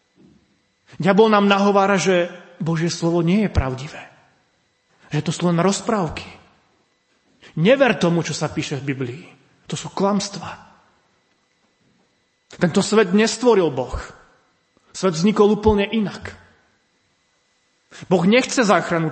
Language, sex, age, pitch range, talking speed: Slovak, male, 30-49, 145-175 Hz, 115 wpm